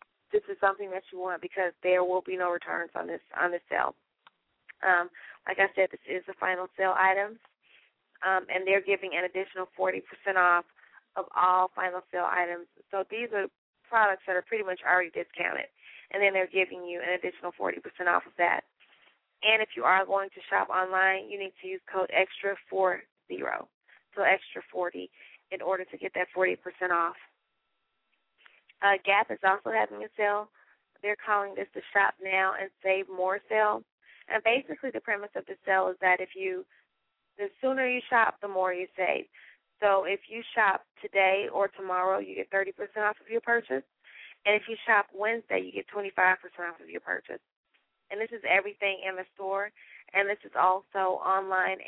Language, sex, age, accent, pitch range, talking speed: English, female, 20-39, American, 185-205 Hz, 190 wpm